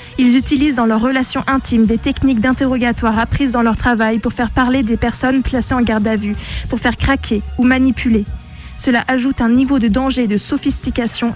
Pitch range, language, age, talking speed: 225-260 Hz, French, 20-39, 195 wpm